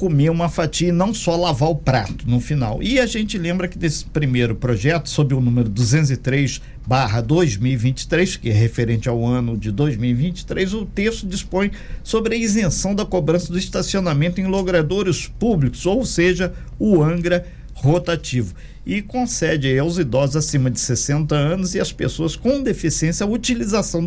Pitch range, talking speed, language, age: 135-190 Hz, 160 wpm, Portuguese, 50-69